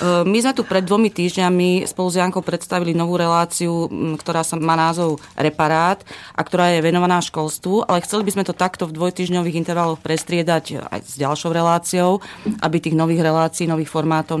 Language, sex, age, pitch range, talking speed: Slovak, female, 30-49, 155-180 Hz, 170 wpm